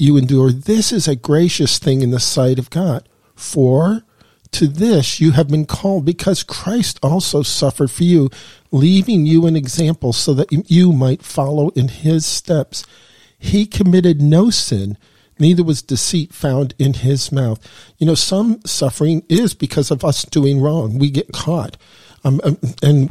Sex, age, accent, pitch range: male, 50-69, American, 135-175 Hz